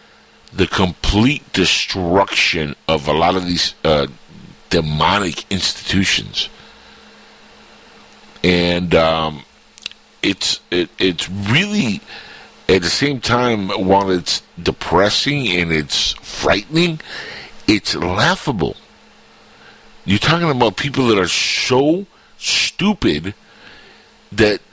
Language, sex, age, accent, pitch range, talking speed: English, male, 60-79, American, 90-130 Hz, 90 wpm